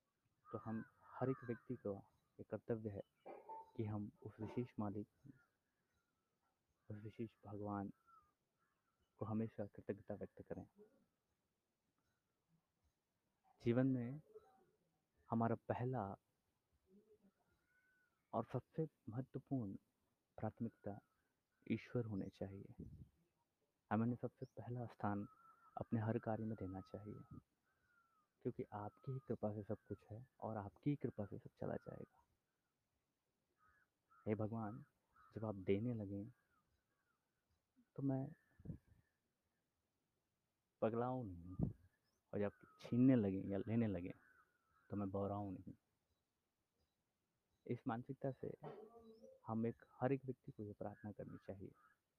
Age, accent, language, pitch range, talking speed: 30-49, native, Hindi, 105-130 Hz, 105 wpm